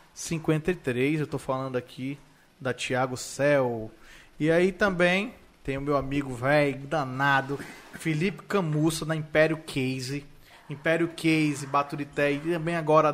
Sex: male